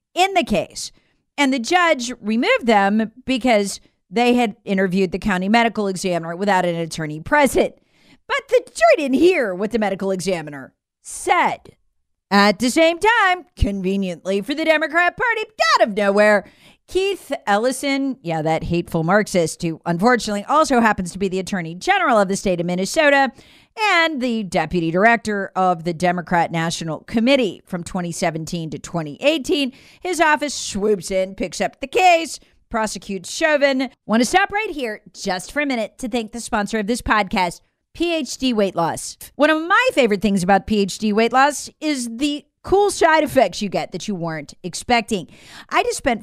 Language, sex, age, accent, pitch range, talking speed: English, female, 40-59, American, 185-270 Hz, 165 wpm